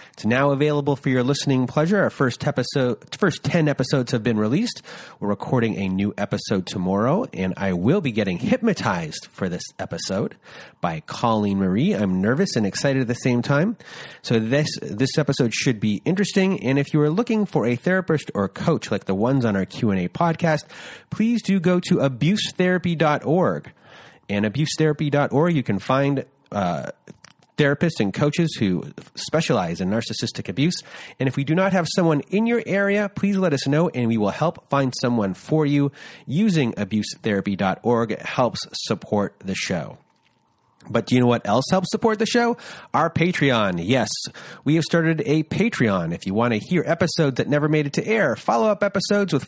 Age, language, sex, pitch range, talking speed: 30-49, English, male, 120-175 Hz, 175 wpm